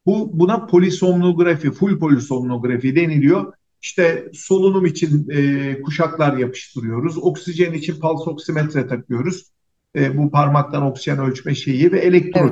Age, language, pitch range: 50-69, Turkish, 145-190 Hz